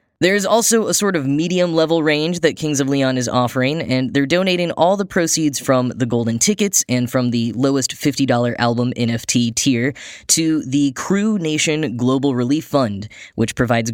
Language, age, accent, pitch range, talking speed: English, 10-29, American, 125-155 Hz, 170 wpm